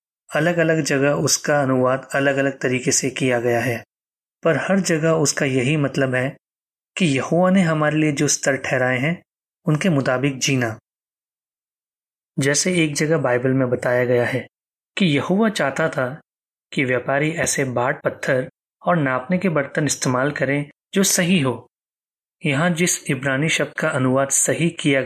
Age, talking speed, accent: 20-39, 155 wpm, native